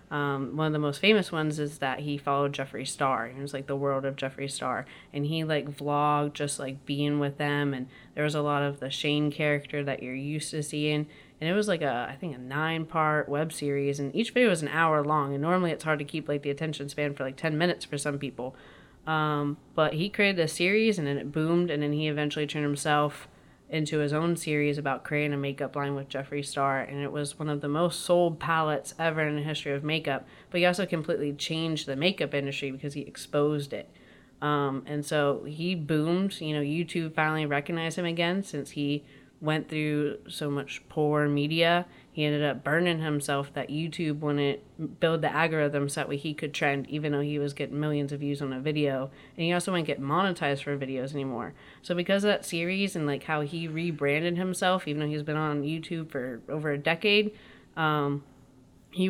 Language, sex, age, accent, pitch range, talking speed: English, female, 30-49, American, 140-160 Hz, 220 wpm